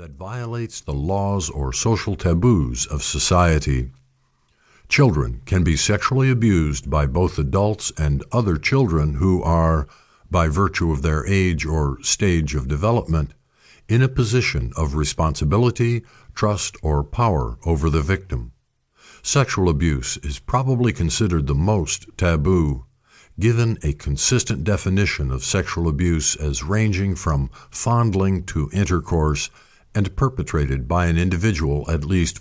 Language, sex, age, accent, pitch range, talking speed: English, male, 50-69, American, 75-110 Hz, 130 wpm